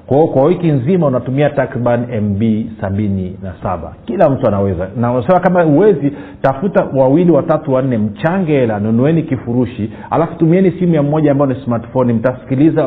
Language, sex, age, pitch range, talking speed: Swahili, male, 40-59, 110-145 Hz, 150 wpm